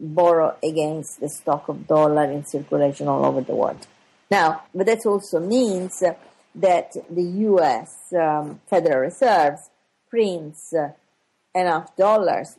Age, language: 50-69, English